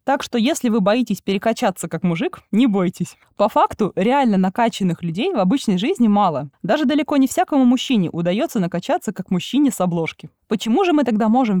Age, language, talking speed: 20-39, Russian, 180 wpm